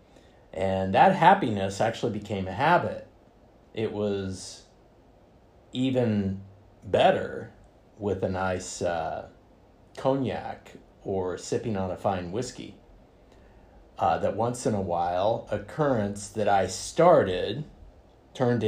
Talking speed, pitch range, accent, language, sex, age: 105 wpm, 95-115 Hz, American, English, male, 50-69